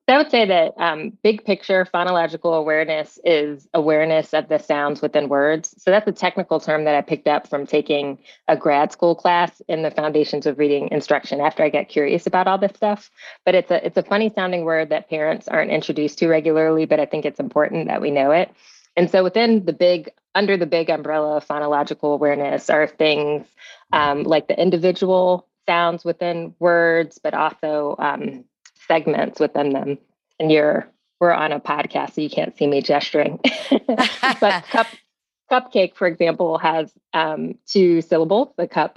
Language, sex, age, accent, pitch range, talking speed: English, female, 20-39, American, 150-180 Hz, 180 wpm